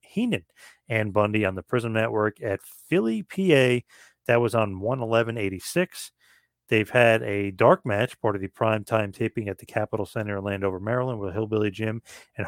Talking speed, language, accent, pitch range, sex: 170 wpm, English, American, 100-130 Hz, male